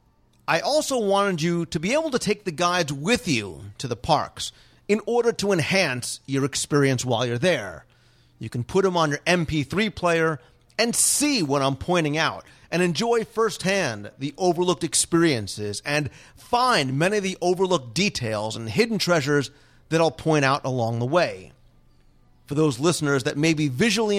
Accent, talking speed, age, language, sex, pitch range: American, 170 wpm, 40-59, English, male, 140-200 Hz